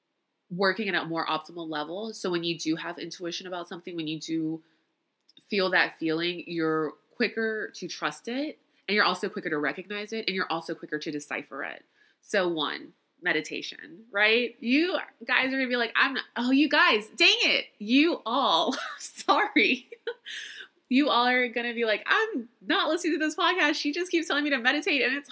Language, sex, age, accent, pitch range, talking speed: English, female, 20-39, American, 175-265 Hz, 195 wpm